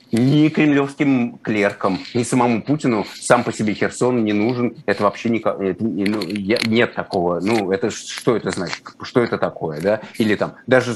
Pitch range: 100-120 Hz